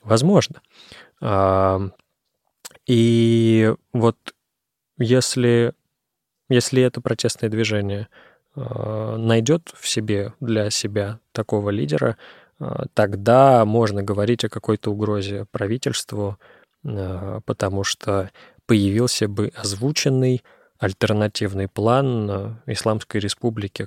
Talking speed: 80 wpm